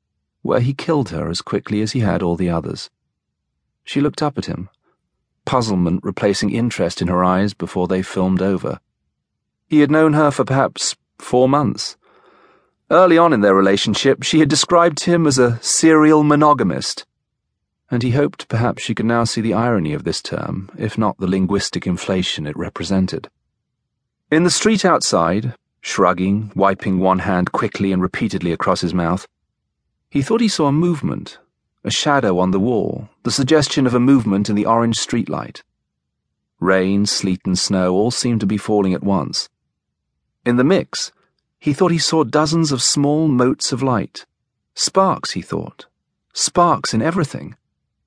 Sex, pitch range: male, 95-145 Hz